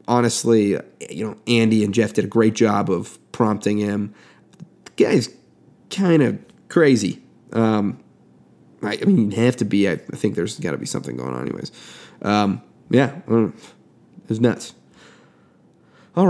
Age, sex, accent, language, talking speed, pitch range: 30-49, male, American, English, 165 wpm, 105-130 Hz